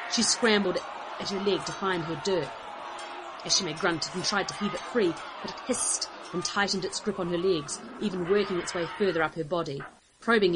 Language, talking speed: English, 205 wpm